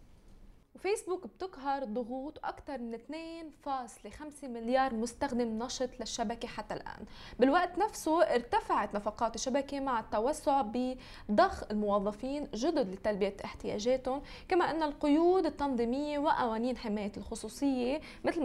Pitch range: 230-300 Hz